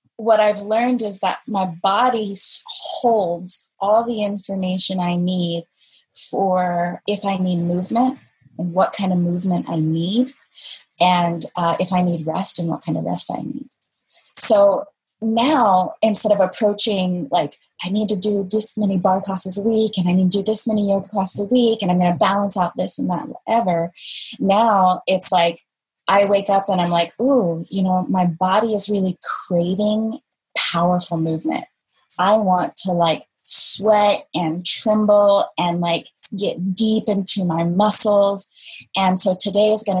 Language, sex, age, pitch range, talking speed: English, female, 20-39, 175-210 Hz, 170 wpm